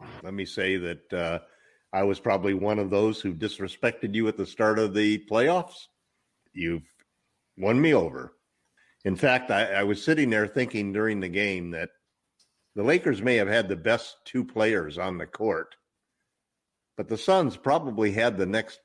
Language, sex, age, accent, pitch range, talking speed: English, male, 50-69, American, 95-120 Hz, 175 wpm